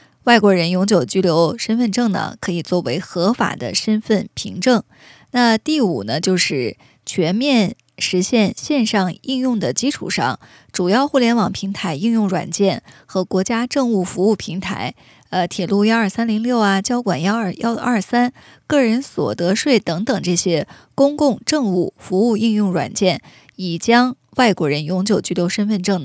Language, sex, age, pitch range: Chinese, female, 20-39, 190-250 Hz